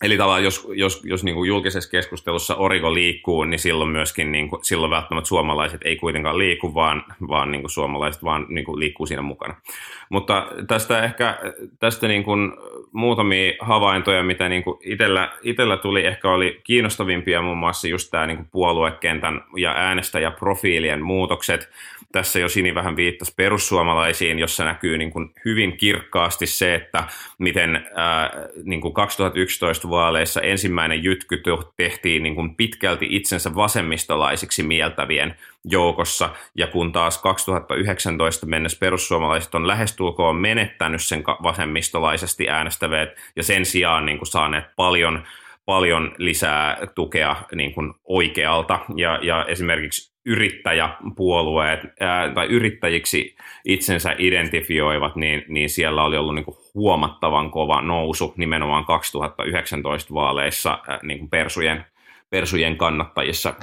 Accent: native